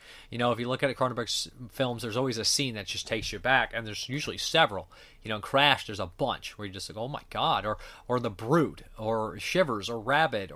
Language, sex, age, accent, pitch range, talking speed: English, male, 30-49, American, 105-130 Hz, 240 wpm